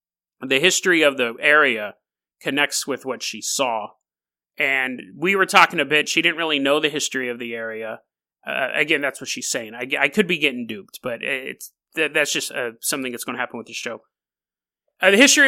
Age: 30-49